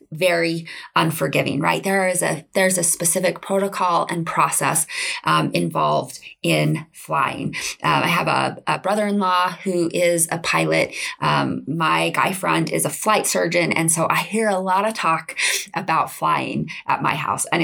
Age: 20-39